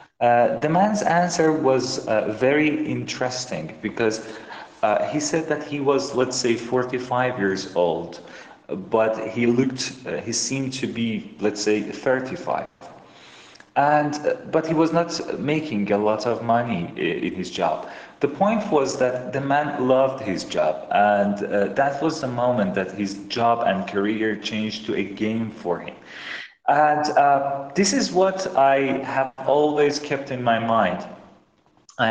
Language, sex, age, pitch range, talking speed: English, male, 40-59, 105-135 Hz, 160 wpm